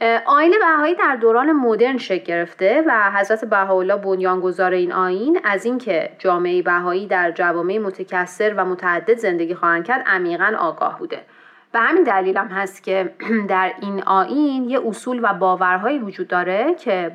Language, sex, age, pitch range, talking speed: Persian, female, 30-49, 185-235 Hz, 150 wpm